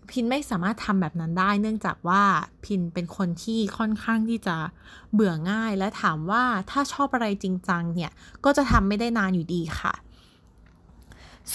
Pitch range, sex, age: 185-245 Hz, female, 20-39